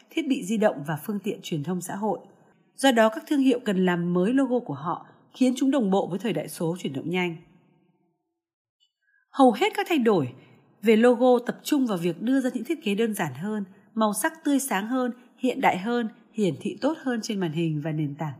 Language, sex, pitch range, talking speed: Vietnamese, female, 175-250 Hz, 230 wpm